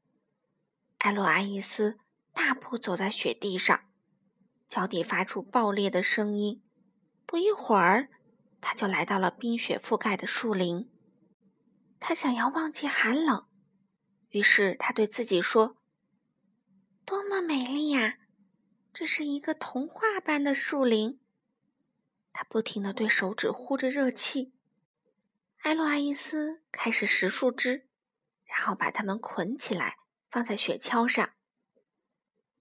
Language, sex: Chinese, female